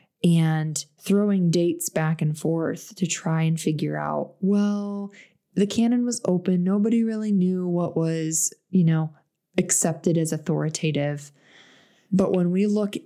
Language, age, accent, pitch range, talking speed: English, 20-39, American, 160-200 Hz, 140 wpm